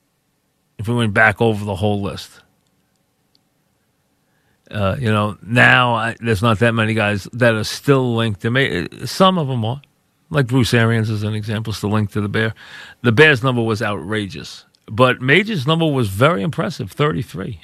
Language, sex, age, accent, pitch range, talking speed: English, male, 40-59, American, 105-130 Hz, 175 wpm